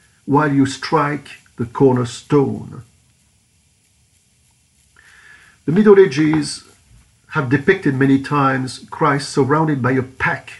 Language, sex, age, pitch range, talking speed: English, male, 50-69, 100-145 Hz, 95 wpm